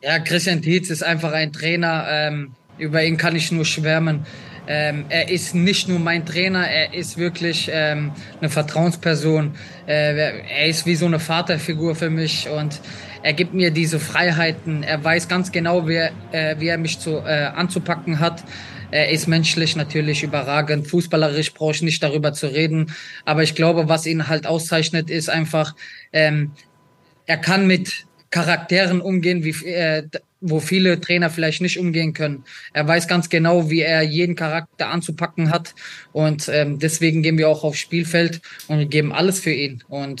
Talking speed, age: 175 wpm, 20-39